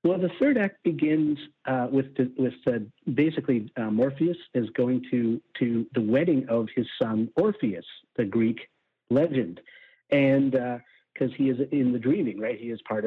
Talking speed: 175 wpm